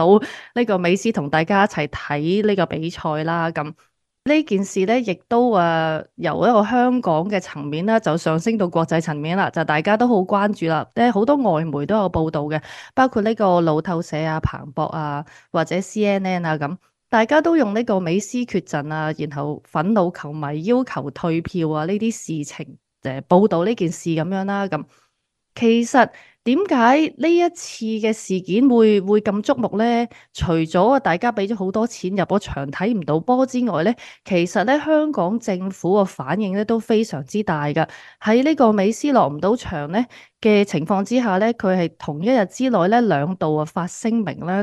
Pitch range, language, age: 160-225 Hz, Chinese, 20-39